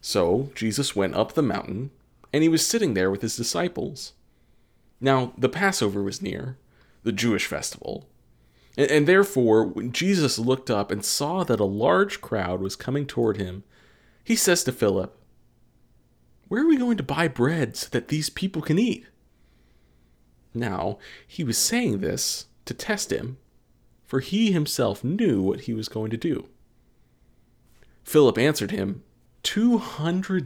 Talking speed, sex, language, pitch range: 150 wpm, male, English, 95-150 Hz